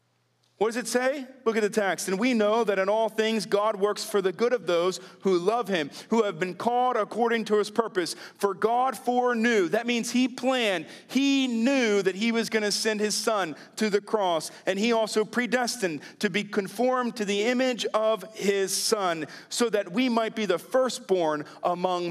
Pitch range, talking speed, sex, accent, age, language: 195-240 Hz, 200 wpm, male, American, 40-59, English